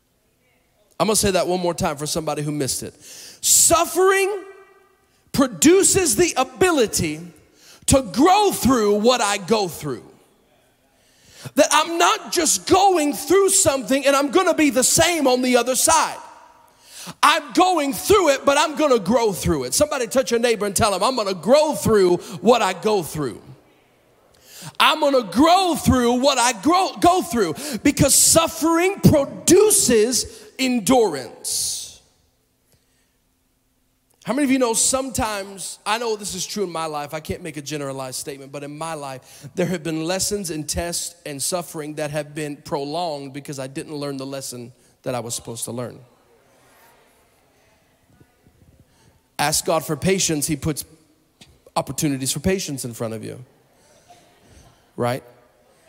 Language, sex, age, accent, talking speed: English, male, 40-59, American, 155 wpm